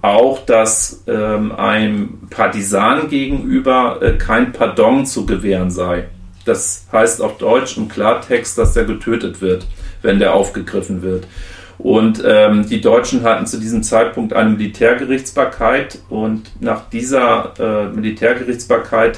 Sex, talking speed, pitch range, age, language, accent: male, 130 wpm, 100-125 Hz, 40-59, German, German